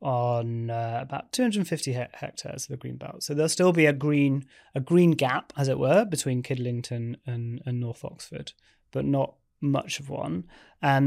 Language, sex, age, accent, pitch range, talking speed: English, male, 20-39, British, 125-145 Hz, 185 wpm